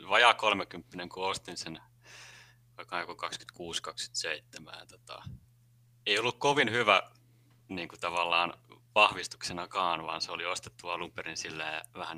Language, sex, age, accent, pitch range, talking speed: Finnish, male, 30-49, native, 90-120 Hz, 120 wpm